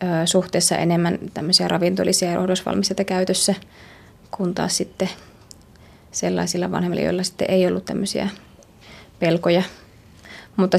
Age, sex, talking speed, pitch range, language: 20-39, female, 105 wpm, 170-190 Hz, Finnish